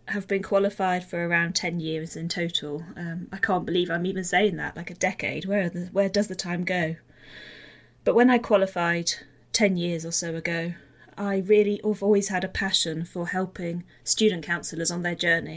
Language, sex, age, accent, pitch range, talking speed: English, female, 20-39, British, 170-200 Hz, 195 wpm